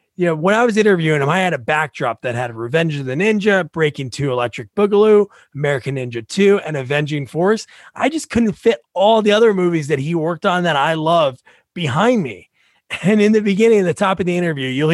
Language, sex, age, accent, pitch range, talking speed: English, male, 30-49, American, 140-200 Hz, 225 wpm